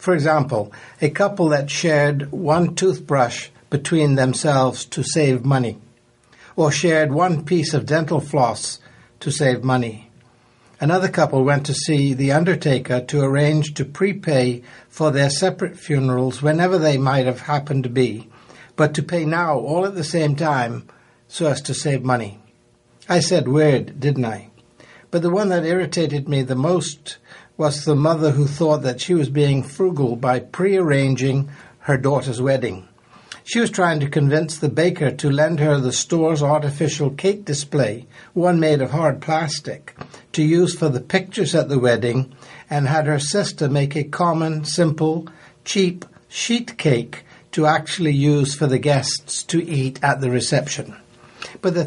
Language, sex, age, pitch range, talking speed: English, male, 60-79, 130-165 Hz, 160 wpm